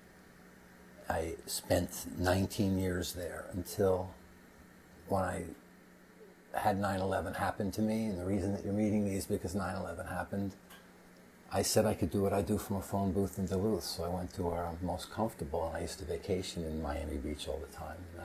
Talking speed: 185 wpm